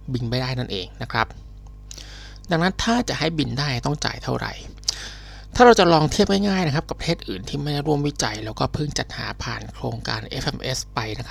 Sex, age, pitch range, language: male, 20-39, 110-135 Hz, Thai